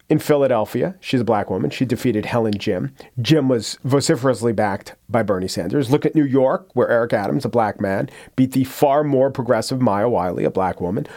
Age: 40-59